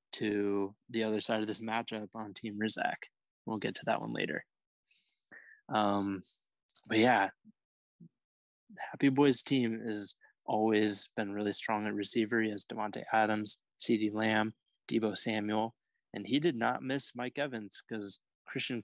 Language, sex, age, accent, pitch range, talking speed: English, male, 20-39, American, 105-115 Hz, 145 wpm